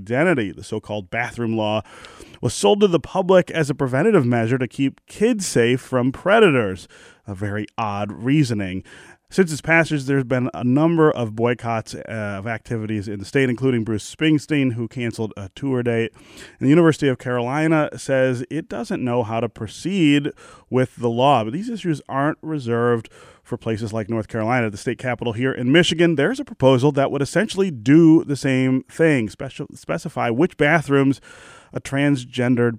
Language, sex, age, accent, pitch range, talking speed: English, male, 30-49, American, 115-140 Hz, 170 wpm